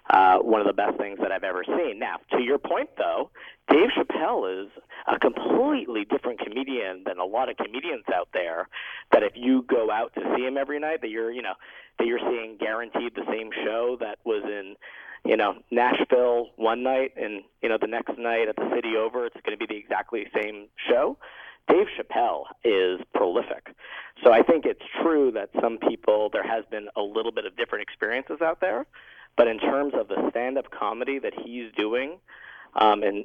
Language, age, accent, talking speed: English, 40-59, American, 200 wpm